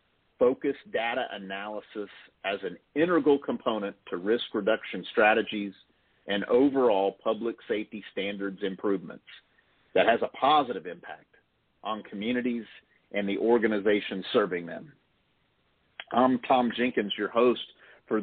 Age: 50-69